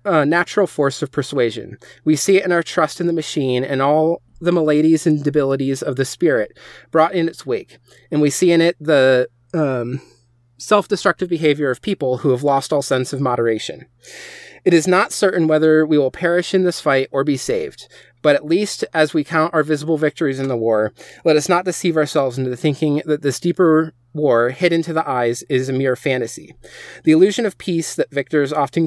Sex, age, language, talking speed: male, 30-49, English, 205 wpm